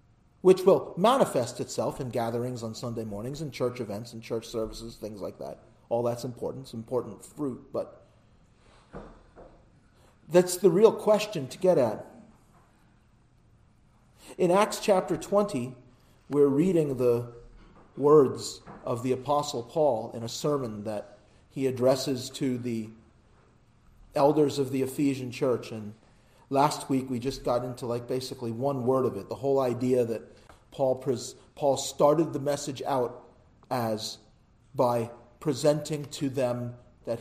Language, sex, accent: English, male, American